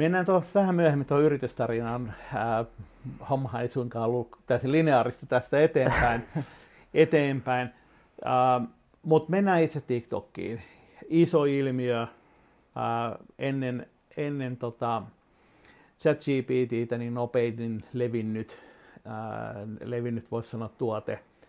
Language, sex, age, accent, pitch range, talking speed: Finnish, male, 50-69, native, 115-130 Hz, 105 wpm